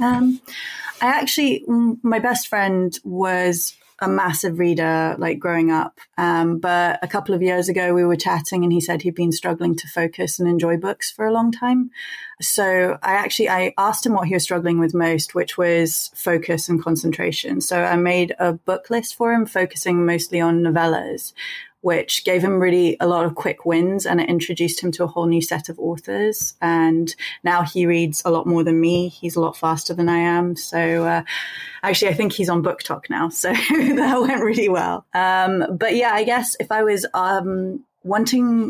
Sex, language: female, English